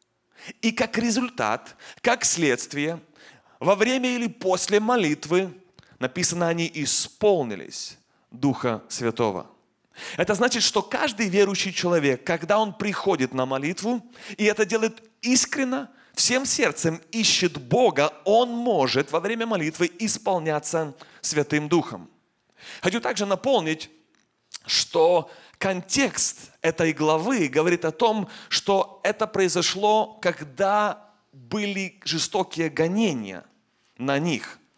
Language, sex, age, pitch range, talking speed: Russian, male, 30-49, 150-215 Hz, 105 wpm